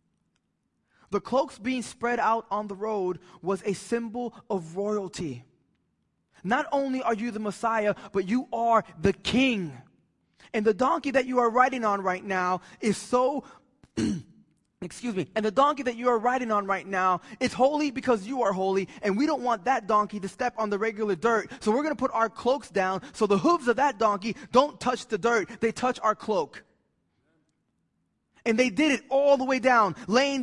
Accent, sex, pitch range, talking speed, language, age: American, male, 205-255 Hz, 190 wpm, English, 20-39